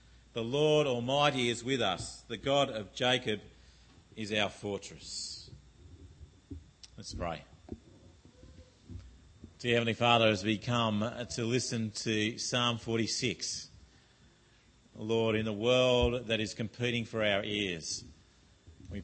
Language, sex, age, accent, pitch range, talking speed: English, male, 40-59, Australian, 95-130 Hz, 115 wpm